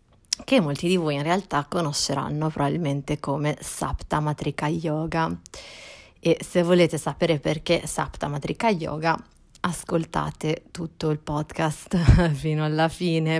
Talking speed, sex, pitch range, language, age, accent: 120 wpm, female, 150-170 Hz, Italian, 30-49, native